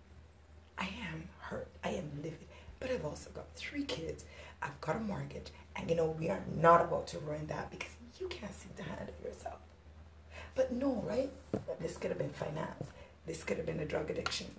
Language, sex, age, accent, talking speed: English, female, 30-49, American, 205 wpm